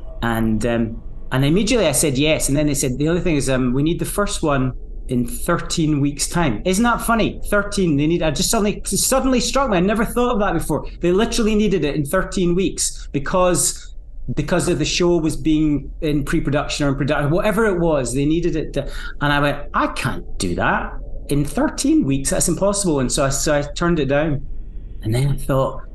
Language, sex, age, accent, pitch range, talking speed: English, male, 30-49, British, 130-175 Hz, 215 wpm